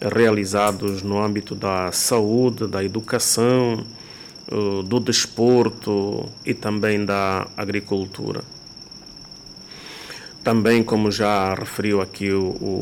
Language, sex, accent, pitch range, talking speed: Portuguese, male, Brazilian, 100-115 Hz, 90 wpm